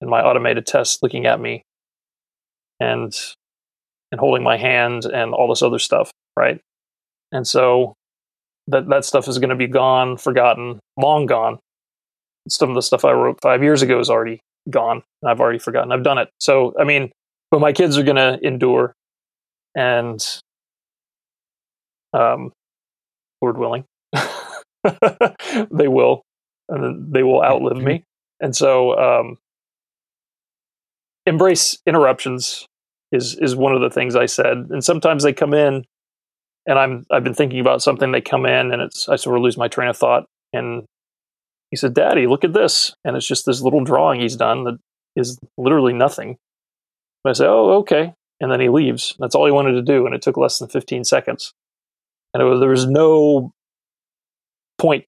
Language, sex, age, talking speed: English, male, 30-49, 170 wpm